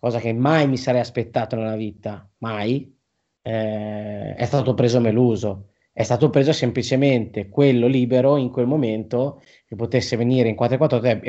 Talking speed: 150 wpm